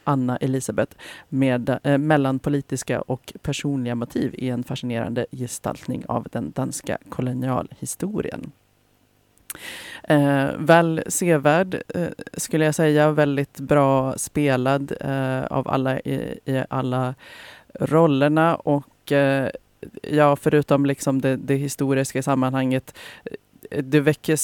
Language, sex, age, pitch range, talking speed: Swedish, female, 30-49, 130-145 Hz, 110 wpm